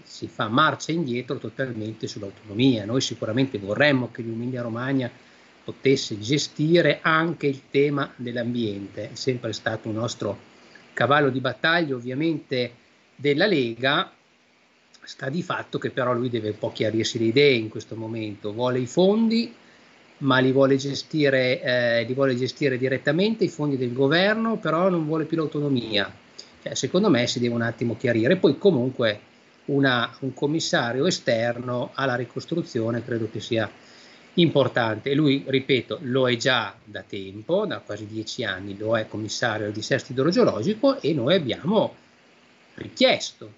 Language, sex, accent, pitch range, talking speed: Italian, male, native, 115-165 Hz, 140 wpm